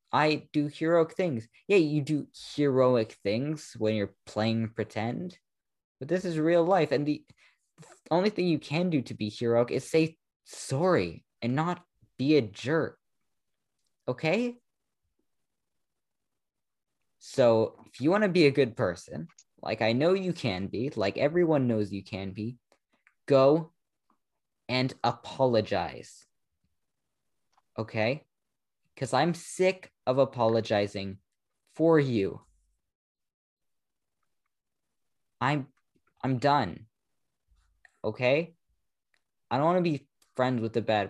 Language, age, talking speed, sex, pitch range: English, 20-39, 120 wpm, male, 110-155 Hz